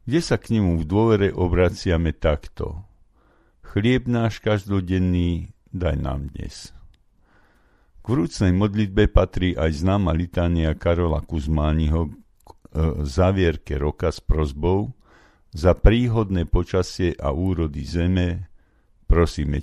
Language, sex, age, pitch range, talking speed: Slovak, male, 50-69, 80-105 Hz, 105 wpm